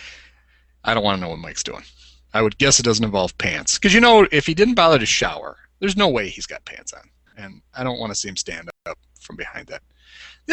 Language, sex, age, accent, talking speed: English, male, 40-59, American, 250 wpm